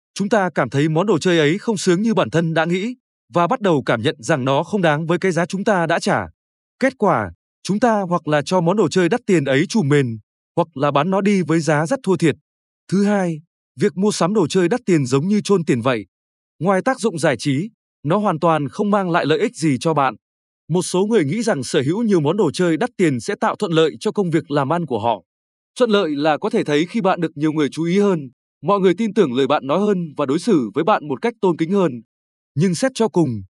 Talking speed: 260 wpm